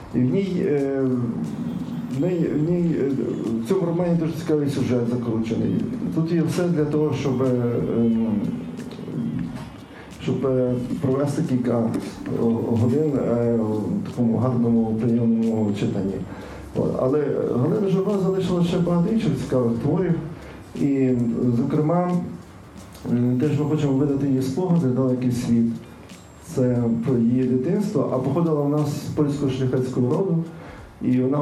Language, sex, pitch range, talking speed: Ukrainian, male, 120-150 Hz, 120 wpm